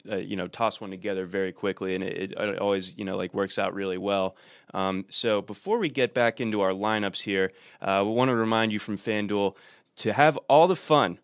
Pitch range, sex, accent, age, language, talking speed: 105-140 Hz, male, American, 20-39, English, 225 wpm